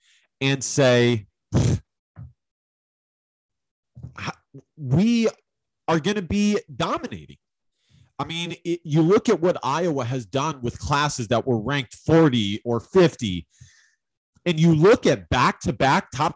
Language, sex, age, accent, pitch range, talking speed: English, male, 30-49, American, 115-165 Hz, 115 wpm